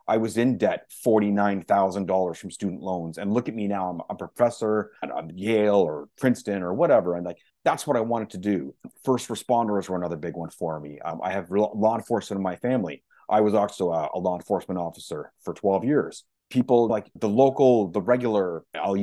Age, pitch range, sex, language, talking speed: 30-49, 95-115 Hz, male, English, 200 wpm